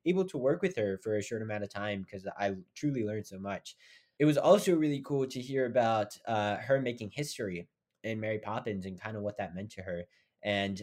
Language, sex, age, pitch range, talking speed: English, male, 20-39, 105-145 Hz, 225 wpm